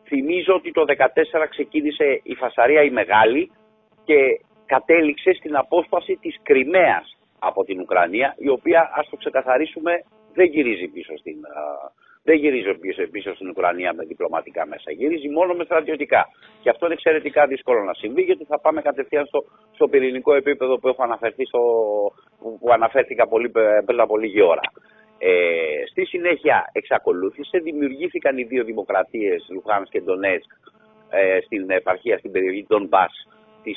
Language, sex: Greek, male